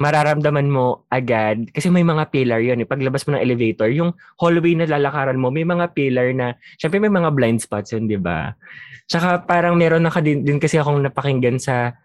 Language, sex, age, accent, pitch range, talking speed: Filipino, male, 20-39, native, 120-155 Hz, 205 wpm